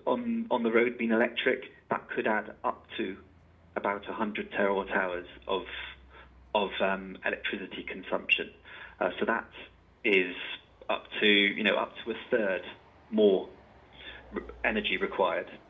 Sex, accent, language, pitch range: male, British, English, 100-110 Hz